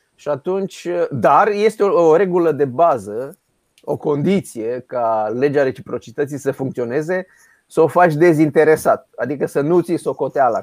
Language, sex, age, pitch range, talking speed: Romanian, male, 30-49, 130-175 Hz, 140 wpm